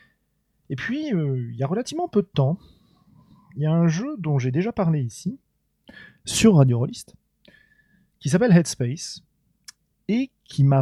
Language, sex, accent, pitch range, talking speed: French, male, French, 130-175 Hz, 160 wpm